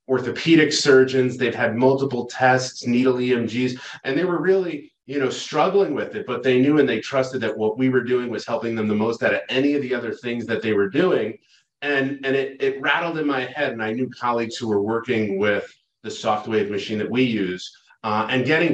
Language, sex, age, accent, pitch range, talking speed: English, male, 30-49, American, 105-130 Hz, 225 wpm